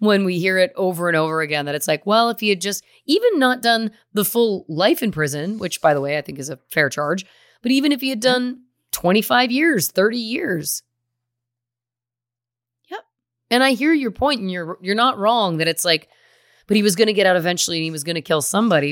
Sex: female